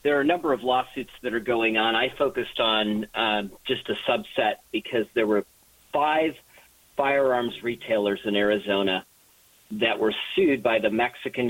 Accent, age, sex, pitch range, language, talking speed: American, 40-59, male, 110-150 Hz, English, 160 wpm